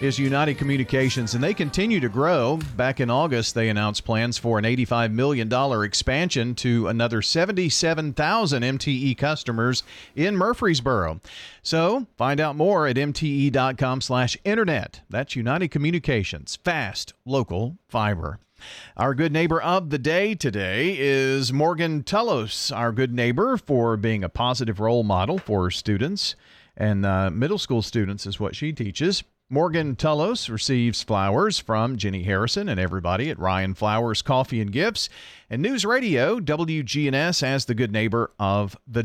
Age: 40-59